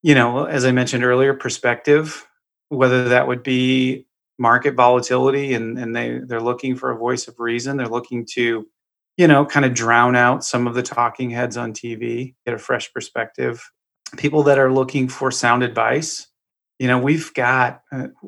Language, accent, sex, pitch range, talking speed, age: English, American, male, 120-130 Hz, 175 wpm, 30-49